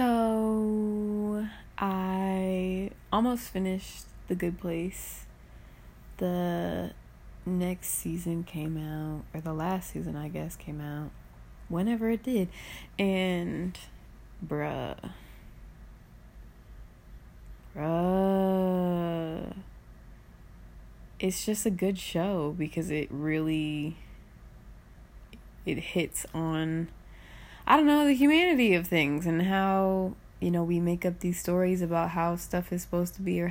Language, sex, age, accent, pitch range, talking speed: English, female, 20-39, American, 160-205 Hz, 110 wpm